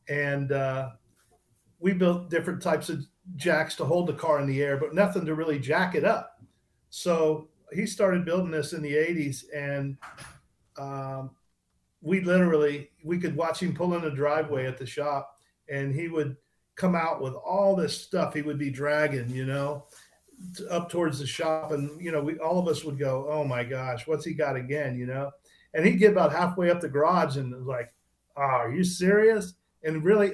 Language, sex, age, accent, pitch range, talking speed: English, male, 50-69, American, 145-180 Hz, 195 wpm